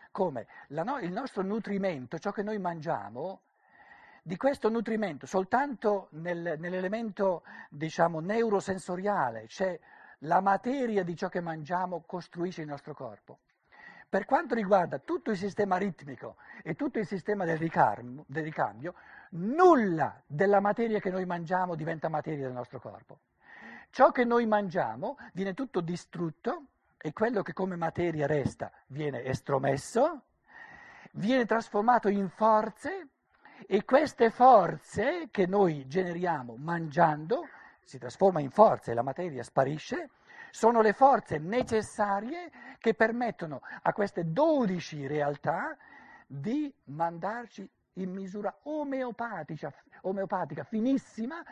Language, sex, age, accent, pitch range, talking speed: Italian, male, 60-79, native, 160-220 Hz, 120 wpm